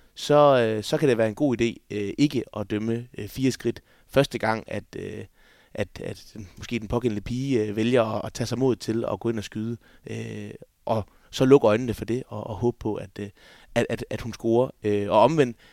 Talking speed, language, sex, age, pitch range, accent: 200 wpm, Danish, male, 20-39, 110-130 Hz, native